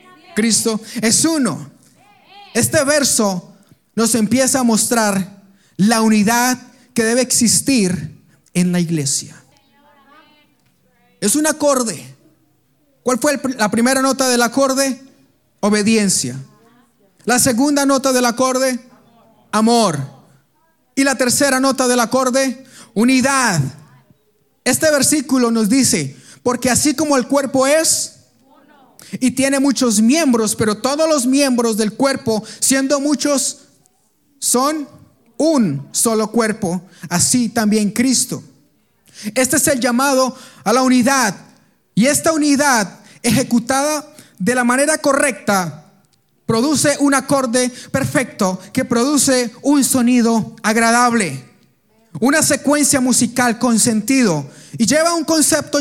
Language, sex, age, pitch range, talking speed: Spanish, male, 30-49, 215-275 Hz, 110 wpm